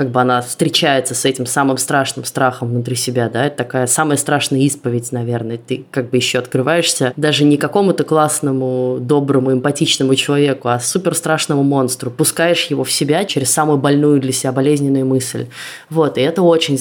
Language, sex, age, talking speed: Russian, female, 20-39, 170 wpm